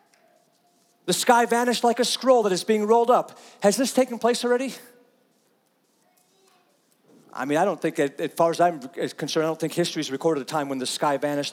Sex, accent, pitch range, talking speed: male, American, 155-220 Hz, 200 wpm